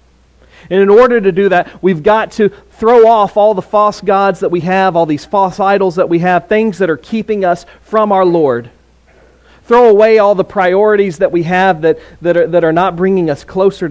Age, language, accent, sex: 40-59, English, American, male